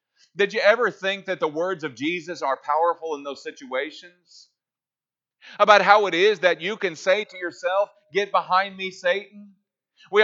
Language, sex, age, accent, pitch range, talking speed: English, male, 40-59, American, 150-200 Hz, 170 wpm